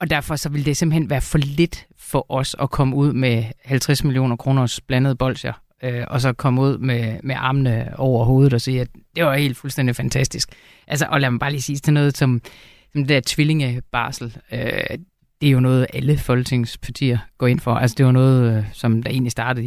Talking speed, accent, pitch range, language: 215 wpm, native, 125-150 Hz, Danish